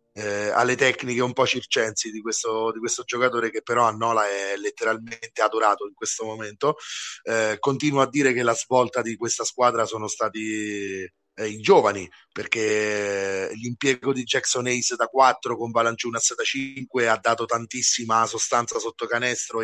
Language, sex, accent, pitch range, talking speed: Italian, male, native, 110-125 Hz, 165 wpm